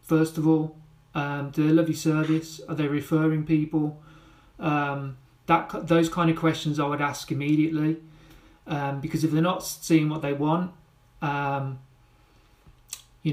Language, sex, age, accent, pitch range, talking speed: English, male, 30-49, British, 145-160 Hz, 155 wpm